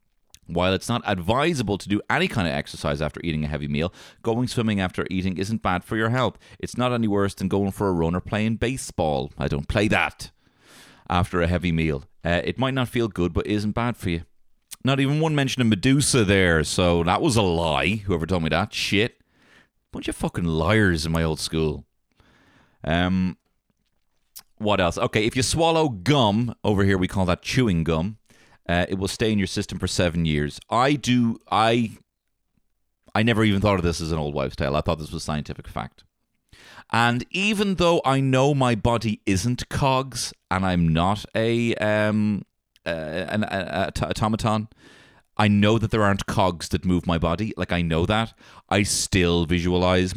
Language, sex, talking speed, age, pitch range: English, male, 190 wpm, 30-49, 85-115 Hz